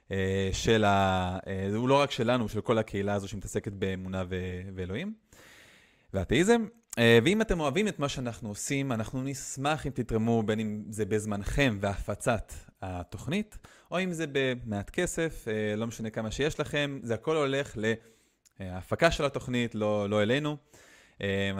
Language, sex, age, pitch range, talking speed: Hebrew, male, 20-39, 105-140 Hz, 155 wpm